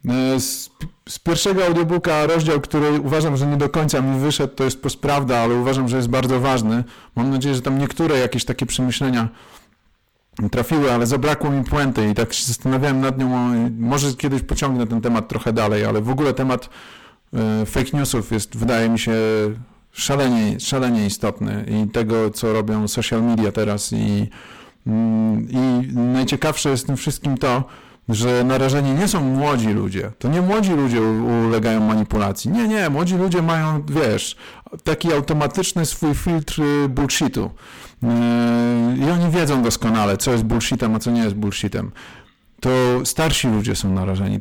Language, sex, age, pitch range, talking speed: Polish, male, 40-59, 115-140 Hz, 155 wpm